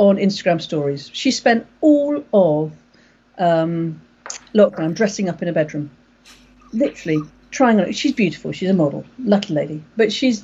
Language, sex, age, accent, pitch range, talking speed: English, female, 40-59, British, 185-285 Hz, 150 wpm